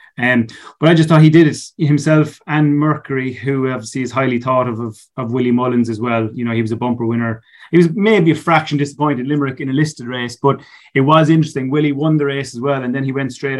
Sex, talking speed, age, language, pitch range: male, 245 wpm, 30-49, English, 120-140 Hz